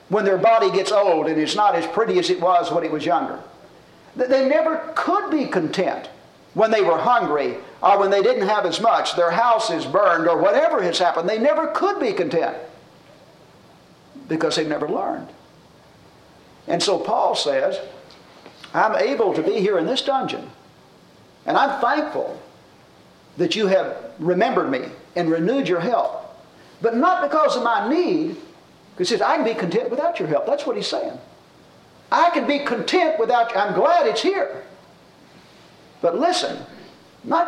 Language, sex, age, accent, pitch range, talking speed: English, male, 50-69, American, 195-320 Hz, 170 wpm